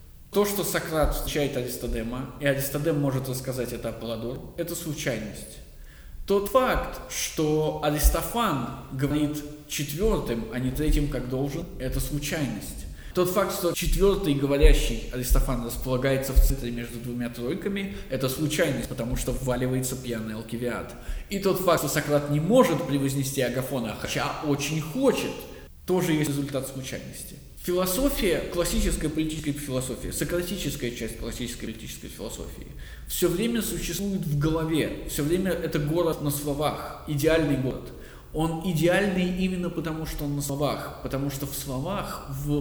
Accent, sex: native, male